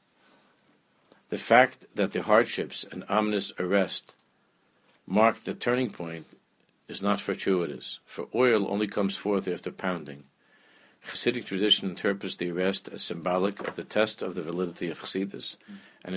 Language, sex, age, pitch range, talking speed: English, male, 60-79, 85-100 Hz, 140 wpm